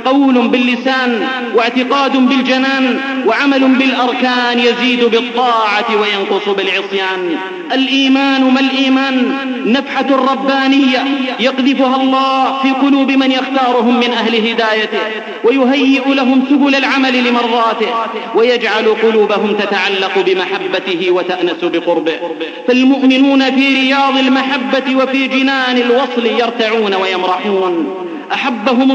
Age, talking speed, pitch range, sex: 40-59, 95 wpm, 210-270 Hz, male